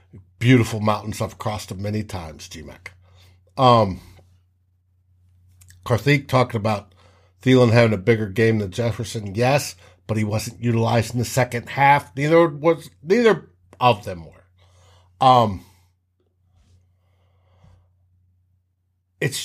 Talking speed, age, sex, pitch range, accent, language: 110 wpm, 60-79, male, 90-125 Hz, American, English